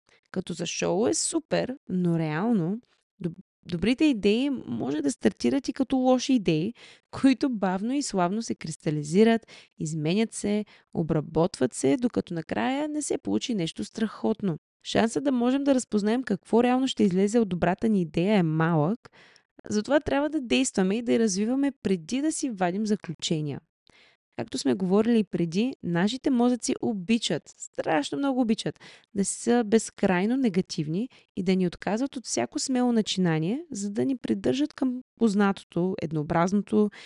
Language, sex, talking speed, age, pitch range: Bulgarian, female, 150 wpm, 20-39, 175-245 Hz